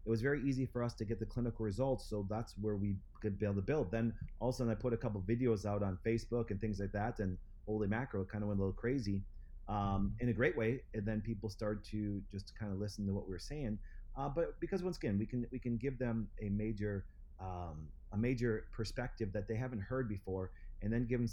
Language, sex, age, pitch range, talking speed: English, male, 30-49, 100-120 Hz, 255 wpm